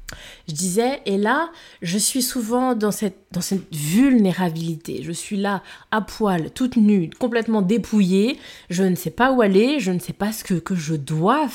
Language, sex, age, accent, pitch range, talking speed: French, female, 20-39, French, 175-240 Hz, 185 wpm